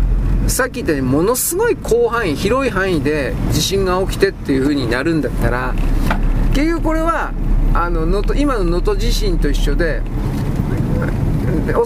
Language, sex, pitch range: Japanese, male, 165-275 Hz